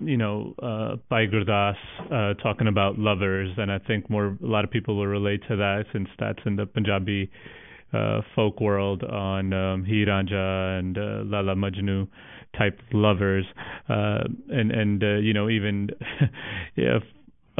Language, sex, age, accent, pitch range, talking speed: English, male, 30-49, American, 100-115 Hz, 155 wpm